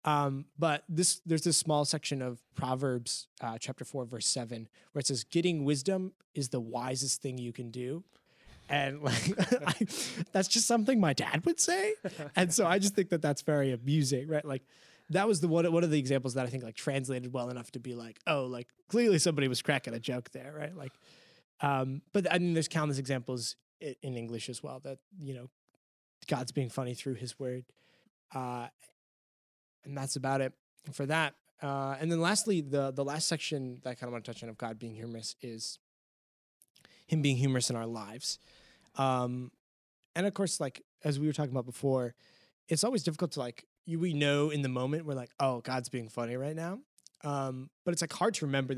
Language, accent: English, American